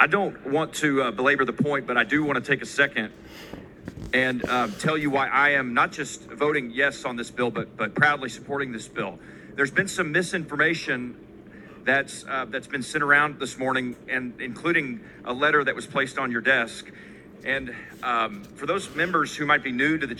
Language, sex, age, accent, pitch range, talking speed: English, male, 40-59, American, 125-155 Hz, 205 wpm